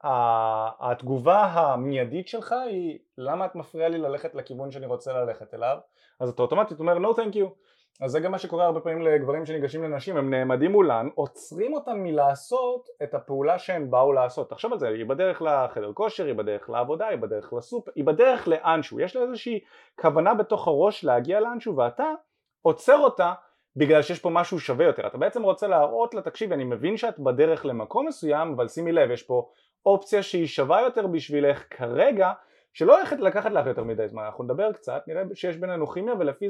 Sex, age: male, 30-49